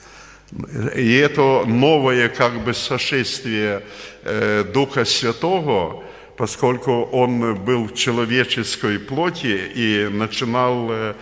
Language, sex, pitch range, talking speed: Russian, male, 115-140 Hz, 85 wpm